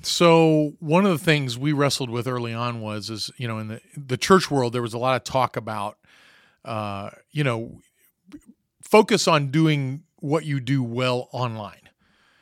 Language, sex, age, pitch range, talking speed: English, male, 40-59, 115-150 Hz, 180 wpm